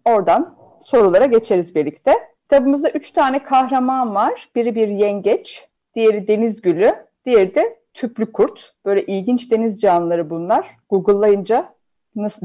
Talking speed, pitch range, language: 125 wpm, 220-320 Hz, Turkish